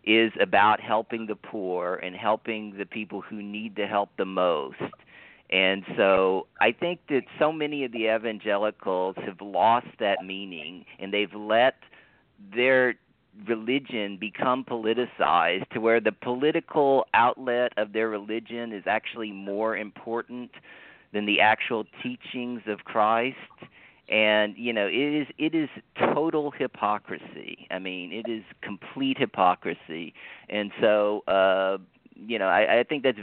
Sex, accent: male, American